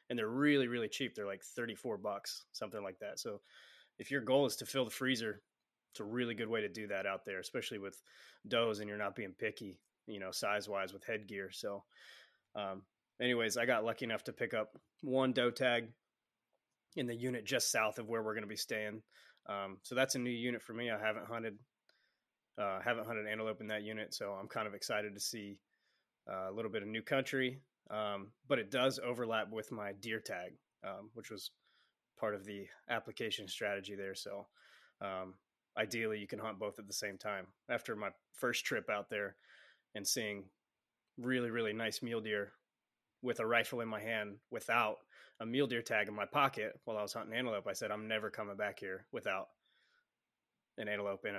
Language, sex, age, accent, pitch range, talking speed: English, male, 20-39, American, 105-120 Hz, 200 wpm